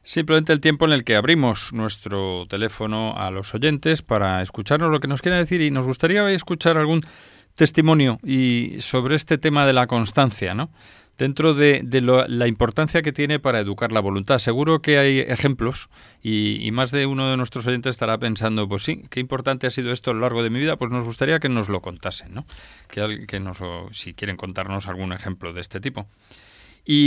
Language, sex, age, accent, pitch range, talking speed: Spanish, male, 30-49, Spanish, 110-155 Hz, 205 wpm